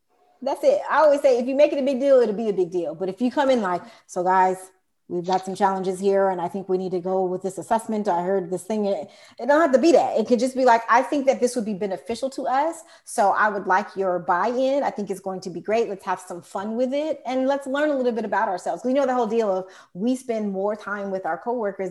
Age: 30-49